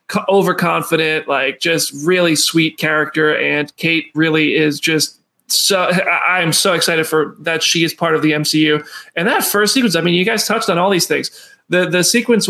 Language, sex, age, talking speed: English, male, 20-39, 190 wpm